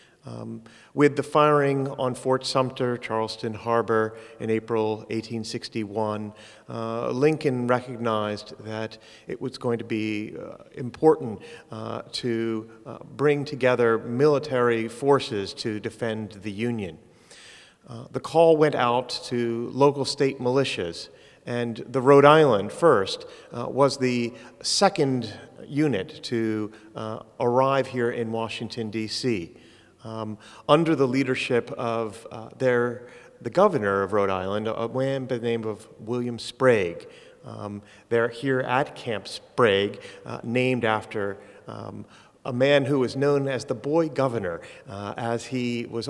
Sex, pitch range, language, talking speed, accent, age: male, 110-135 Hz, English, 135 wpm, American, 40-59